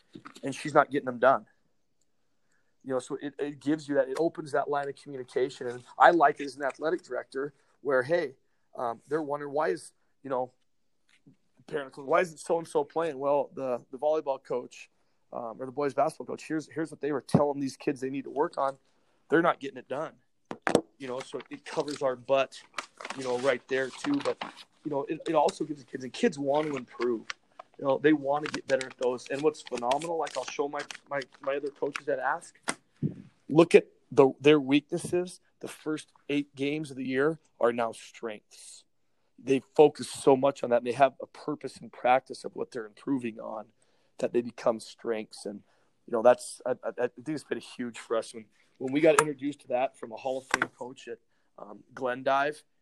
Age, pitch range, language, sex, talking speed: 30-49, 125-150 Hz, English, male, 215 wpm